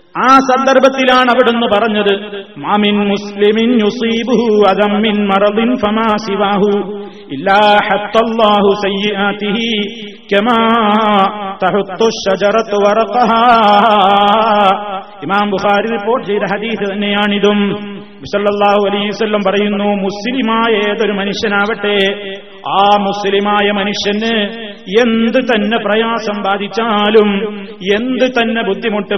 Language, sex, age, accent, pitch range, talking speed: Malayalam, male, 30-49, native, 200-230 Hz, 60 wpm